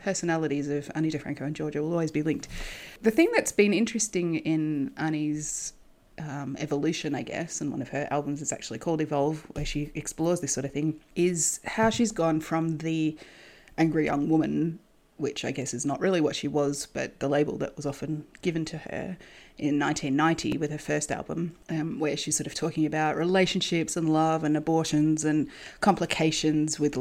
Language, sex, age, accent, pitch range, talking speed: English, female, 30-49, Australian, 145-170 Hz, 190 wpm